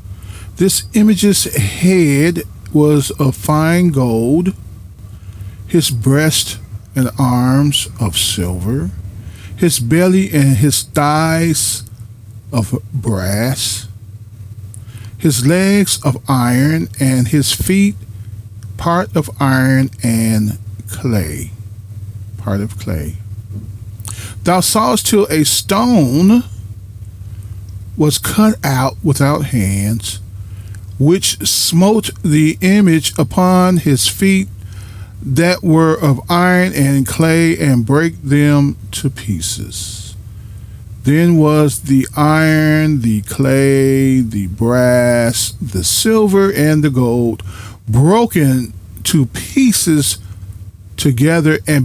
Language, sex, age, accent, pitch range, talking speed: English, male, 40-59, American, 100-150 Hz, 95 wpm